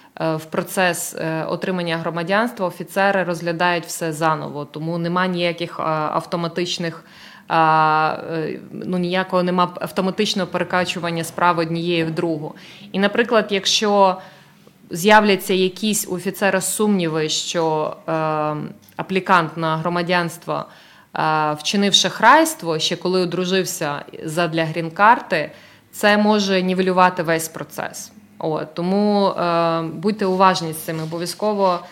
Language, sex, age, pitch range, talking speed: English, female, 20-39, 165-195 Hz, 100 wpm